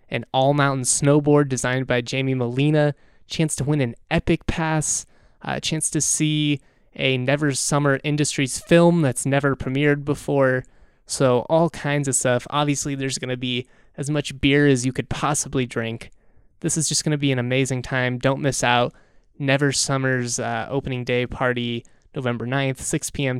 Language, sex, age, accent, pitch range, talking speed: English, male, 20-39, American, 120-145 Hz, 170 wpm